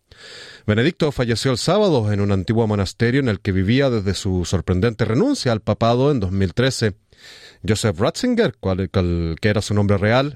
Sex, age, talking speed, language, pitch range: male, 30-49, 150 wpm, Spanish, 100-130 Hz